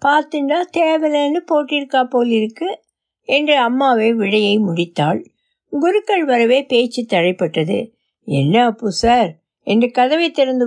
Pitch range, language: 190-265 Hz, Tamil